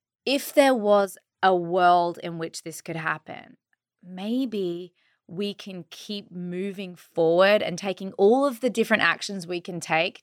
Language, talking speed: English, 155 wpm